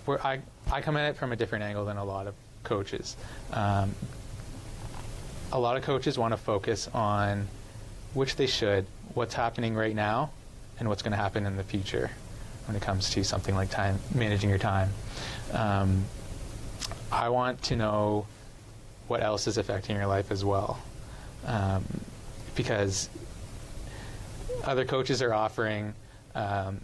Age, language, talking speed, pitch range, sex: 20-39, English, 150 wpm, 105-115 Hz, male